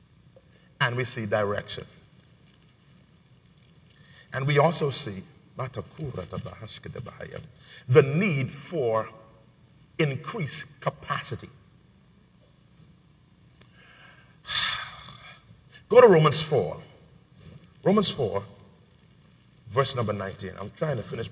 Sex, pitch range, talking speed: male, 110-160 Hz, 75 wpm